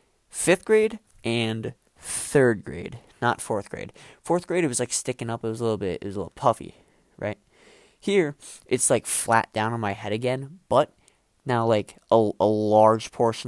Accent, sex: American, male